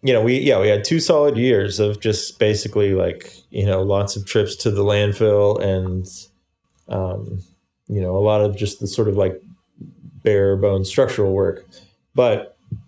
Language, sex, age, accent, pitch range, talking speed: English, male, 20-39, American, 100-115 Hz, 175 wpm